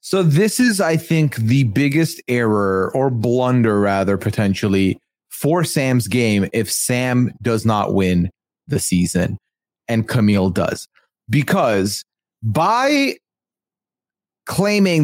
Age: 30-49